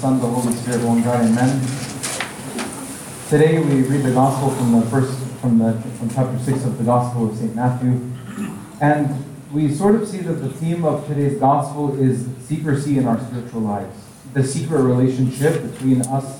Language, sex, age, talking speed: English, male, 30-49, 175 wpm